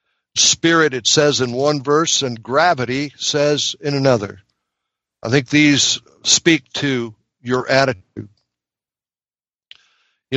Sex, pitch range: male, 120-160 Hz